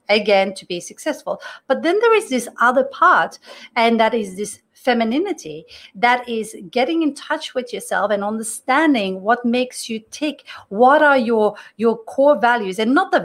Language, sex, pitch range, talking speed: English, female, 210-285 Hz, 170 wpm